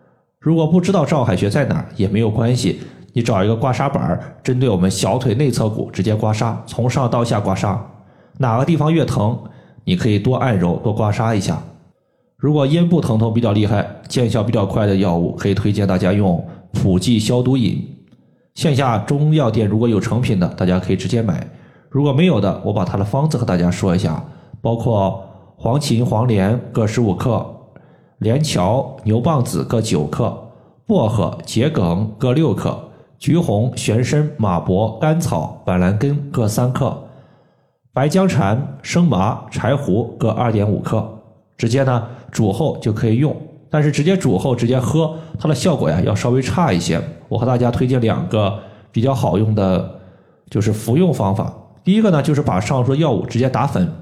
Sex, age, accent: male, 20-39, native